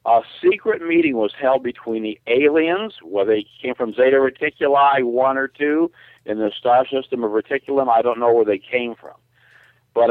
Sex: male